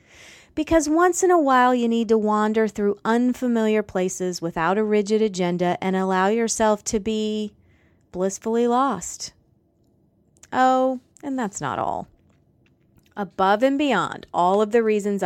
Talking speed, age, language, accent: 140 wpm, 30-49, English, American